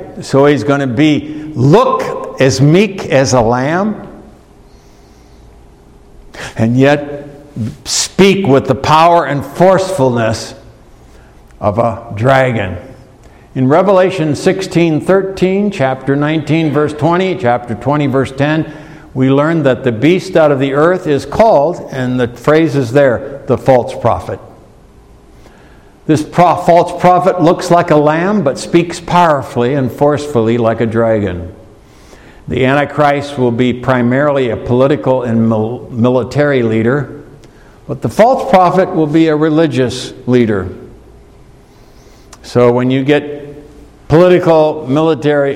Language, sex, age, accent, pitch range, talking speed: English, male, 60-79, American, 125-160 Hz, 120 wpm